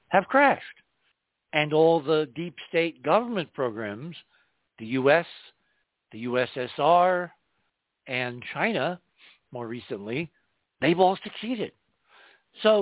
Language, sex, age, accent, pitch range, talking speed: English, male, 60-79, American, 120-165 Hz, 100 wpm